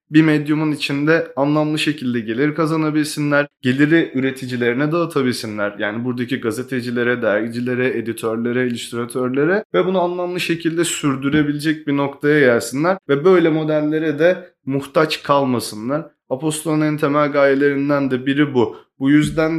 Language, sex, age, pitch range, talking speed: Turkish, male, 20-39, 130-150 Hz, 125 wpm